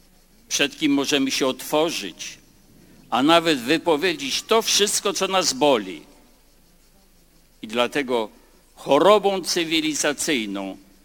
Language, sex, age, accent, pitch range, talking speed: Polish, male, 60-79, native, 130-190 Hz, 90 wpm